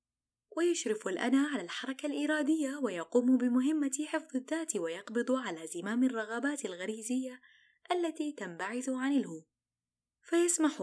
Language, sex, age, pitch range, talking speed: Arabic, female, 20-39, 200-290 Hz, 105 wpm